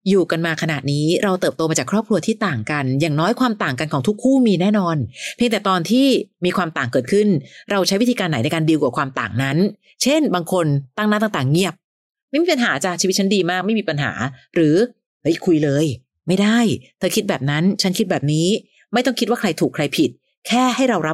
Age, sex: 30-49, female